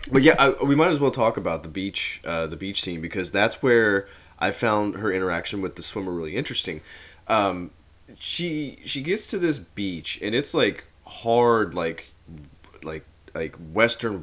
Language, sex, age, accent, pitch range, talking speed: English, male, 20-39, American, 85-115 Hz, 175 wpm